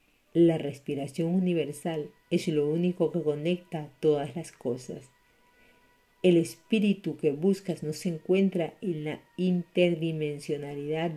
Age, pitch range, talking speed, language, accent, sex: 50-69, 145-175 Hz, 115 wpm, Spanish, American, female